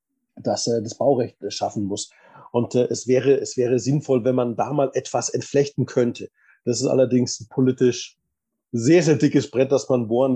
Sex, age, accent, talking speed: male, 30-49, German, 180 wpm